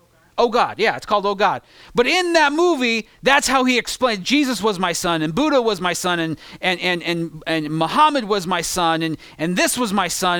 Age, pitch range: 30-49, 180-260 Hz